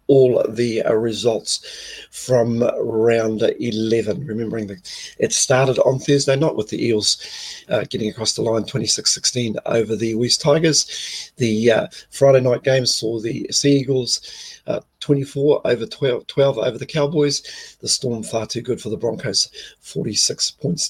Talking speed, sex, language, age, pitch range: 155 wpm, male, English, 40-59, 115-145 Hz